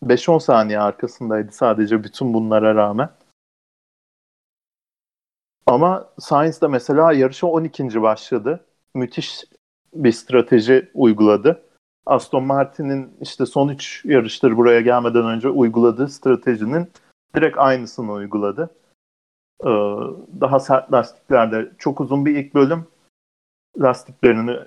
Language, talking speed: Turkish, 100 wpm